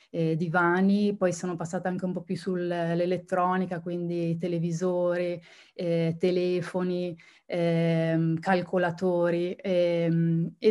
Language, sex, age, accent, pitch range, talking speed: Italian, female, 20-39, native, 170-195 Hz, 100 wpm